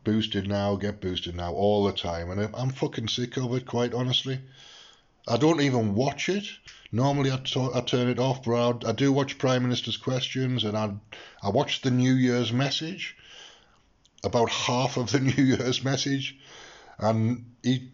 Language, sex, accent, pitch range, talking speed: English, male, British, 105-130 Hz, 175 wpm